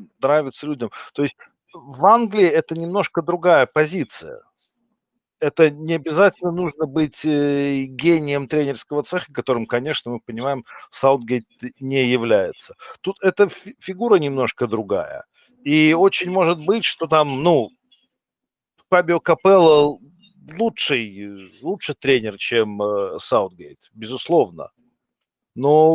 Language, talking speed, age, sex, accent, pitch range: Russian, 105 wpm, 50-69, male, native, 125-170 Hz